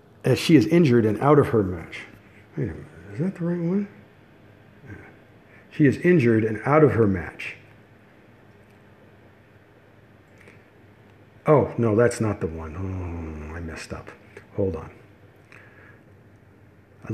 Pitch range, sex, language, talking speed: 105-135 Hz, male, English, 135 wpm